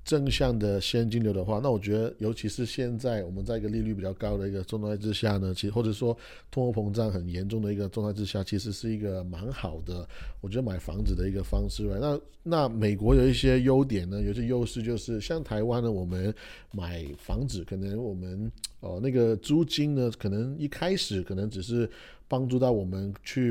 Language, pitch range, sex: Chinese, 100-120 Hz, male